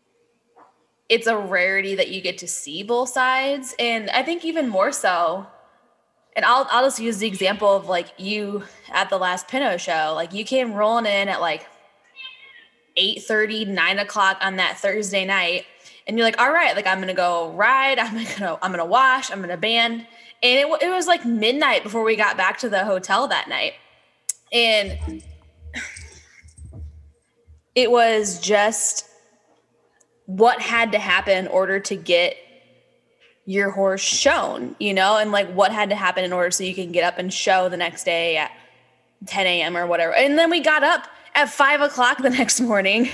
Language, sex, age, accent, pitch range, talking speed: English, female, 10-29, American, 185-245 Hz, 185 wpm